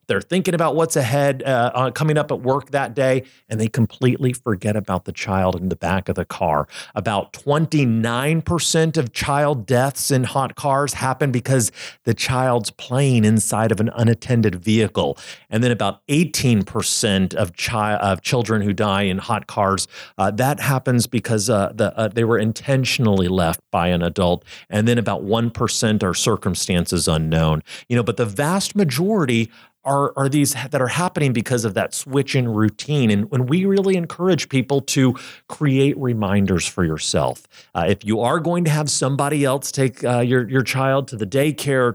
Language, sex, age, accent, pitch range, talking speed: English, male, 40-59, American, 105-140 Hz, 180 wpm